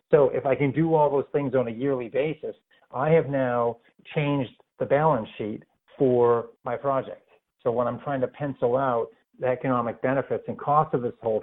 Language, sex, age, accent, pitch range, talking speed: English, male, 50-69, American, 125-150 Hz, 195 wpm